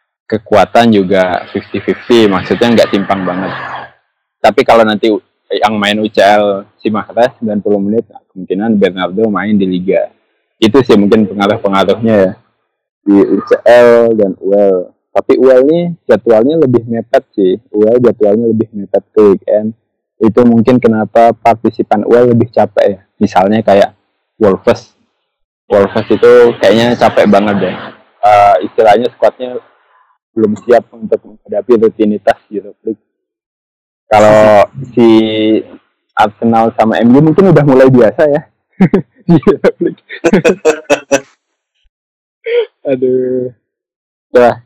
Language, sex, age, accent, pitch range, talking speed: Indonesian, male, 20-39, native, 100-120 Hz, 115 wpm